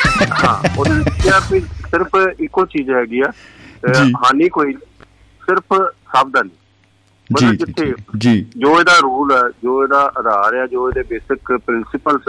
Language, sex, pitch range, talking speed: Punjabi, male, 125-155 Hz, 120 wpm